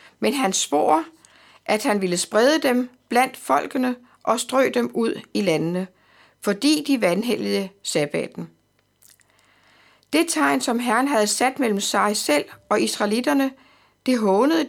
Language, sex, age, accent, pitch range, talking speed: Danish, female, 60-79, native, 190-255 Hz, 135 wpm